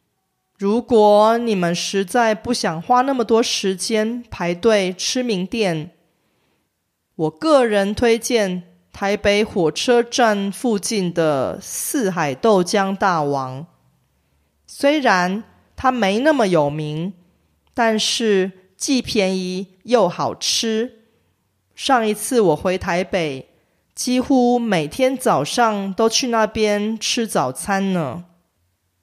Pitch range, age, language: 170-230 Hz, 30-49, Korean